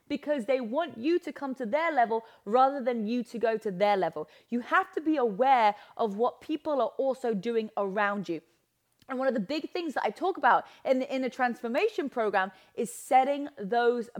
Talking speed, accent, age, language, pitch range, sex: 205 wpm, British, 20-39, English, 220-300 Hz, female